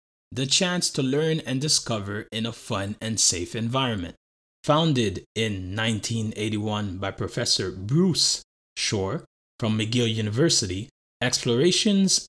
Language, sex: English, male